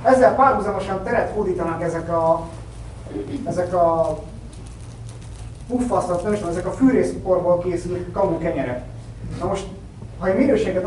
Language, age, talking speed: Hungarian, 30-49, 100 wpm